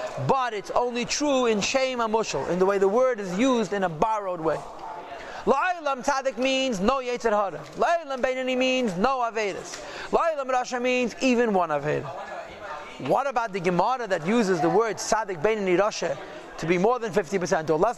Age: 40-59